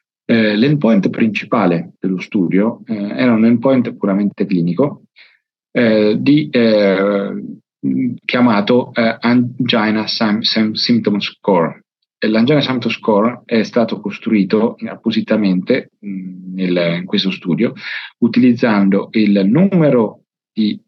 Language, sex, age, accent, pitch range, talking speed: English, male, 40-59, Italian, 95-115 Hz, 90 wpm